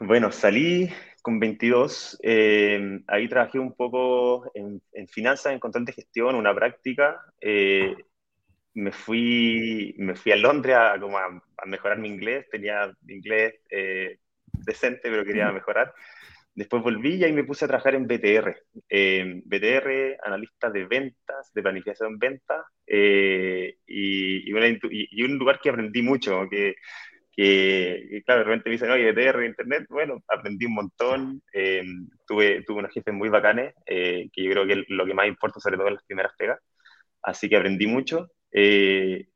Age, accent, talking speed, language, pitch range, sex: 20-39, Argentinian, 165 wpm, Spanish, 100-125 Hz, male